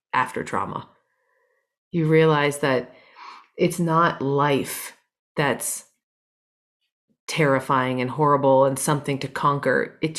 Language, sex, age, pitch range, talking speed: English, female, 30-49, 145-170 Hz, 100 wpm